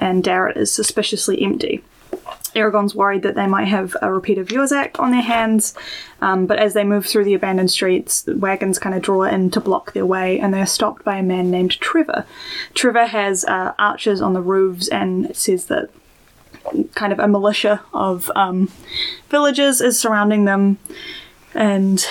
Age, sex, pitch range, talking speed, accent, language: 10-29, female, 185-220 Hz, 180 wpm, Australian, English